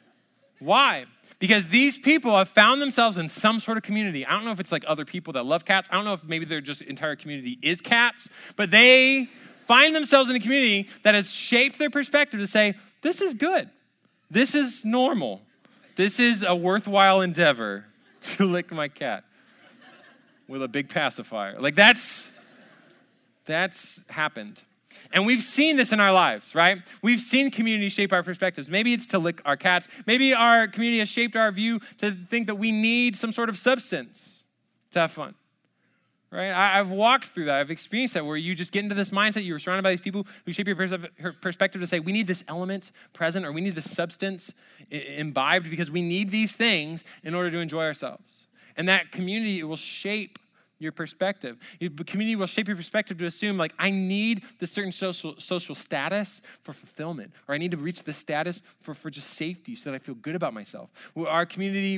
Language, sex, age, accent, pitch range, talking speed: English, male, 20-39, American, 170-225 Hz, 195 wpm